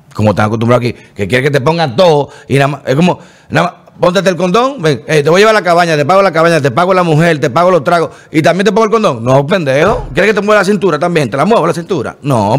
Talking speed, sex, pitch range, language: 285 wpm, male, 125-165 Hz, Spanish